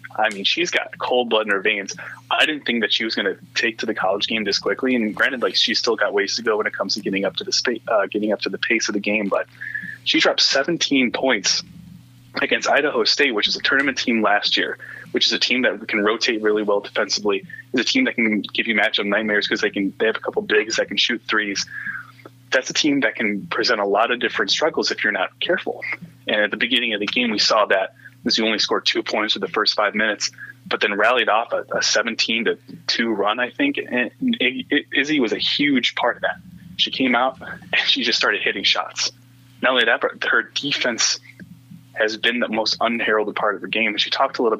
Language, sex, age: English, male, 20-39